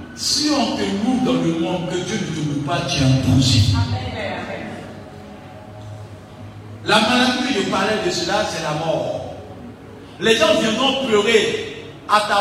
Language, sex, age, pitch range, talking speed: French, male, 50-69, 165-240 Hz, 150 wpm